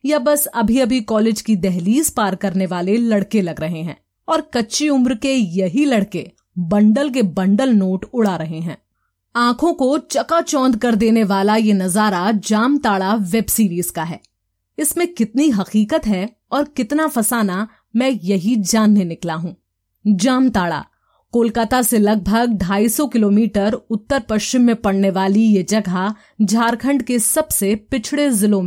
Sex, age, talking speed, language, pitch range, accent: female, 30-49, 145 wpm, Hindi, 200-255 Hz, native